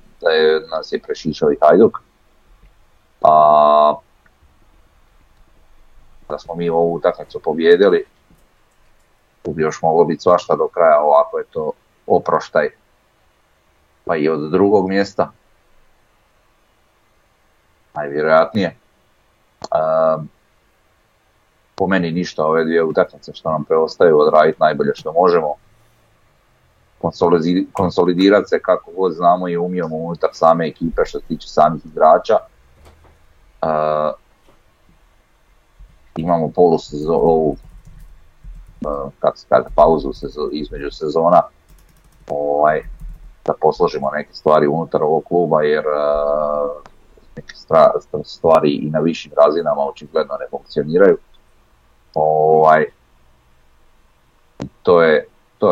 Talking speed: 100 wpm